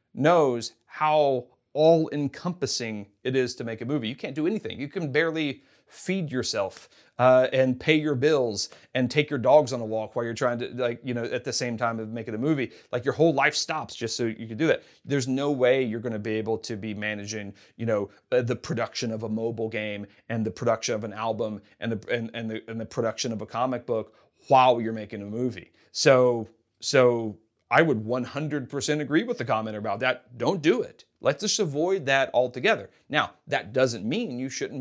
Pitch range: 115-155 Hz